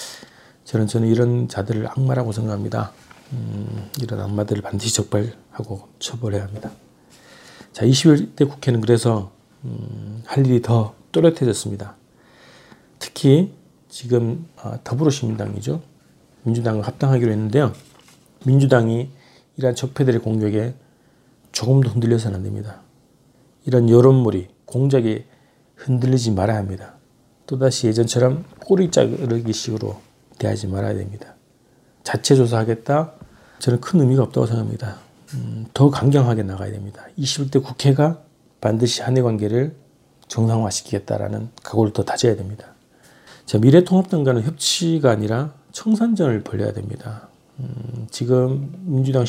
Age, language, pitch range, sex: 40-59, Korean, 110-135 Hz, male